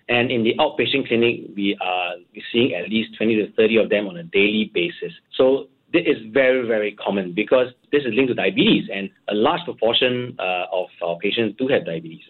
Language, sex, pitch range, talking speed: English, male, 110-145 Hz, 205 wpm